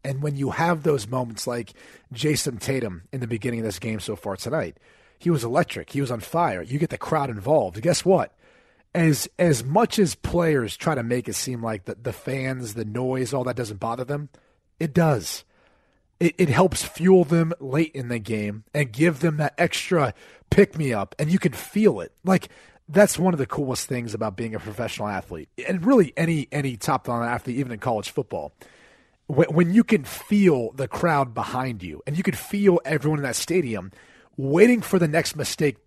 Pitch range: 125-170 Hz